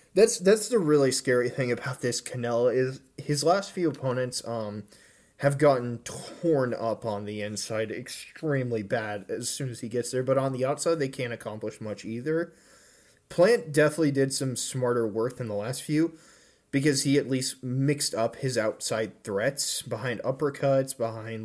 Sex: male